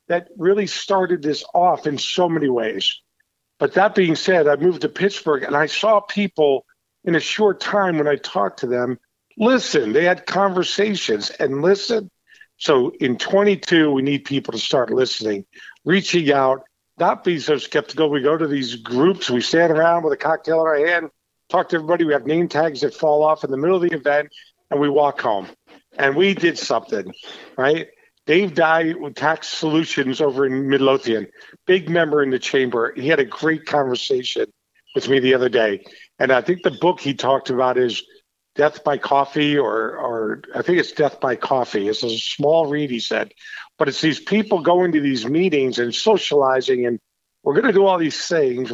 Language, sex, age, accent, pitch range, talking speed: English, male, 50-69, American, 140-180 Hz, 195 wpm